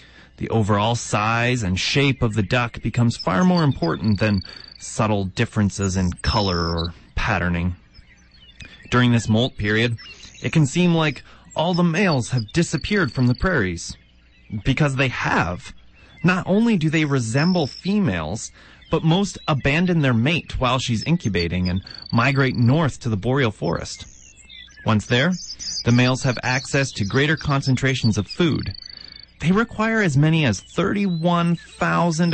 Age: 30-49